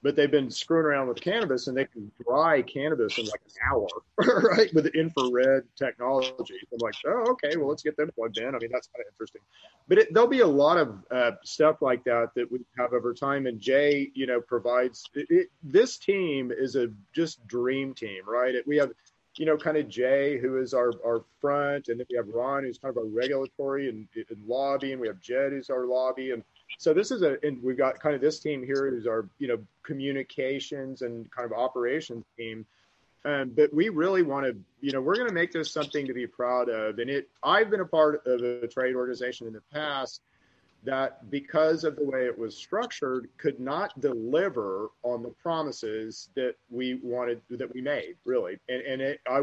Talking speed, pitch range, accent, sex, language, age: 215 wpm, 120-150 Hz, American, male, English, 40-59